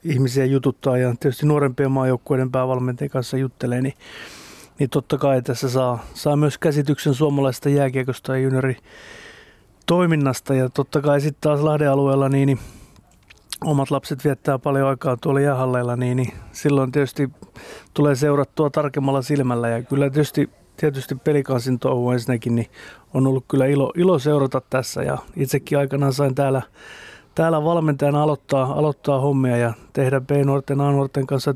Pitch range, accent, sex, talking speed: 130-150 Hz, native, male, 145 wpm